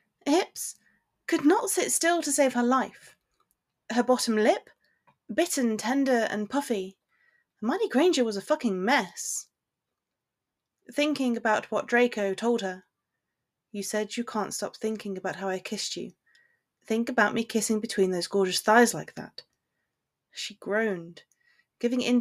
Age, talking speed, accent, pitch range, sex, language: 30-49, 145 wpm, British, 200-255 Hz, female, English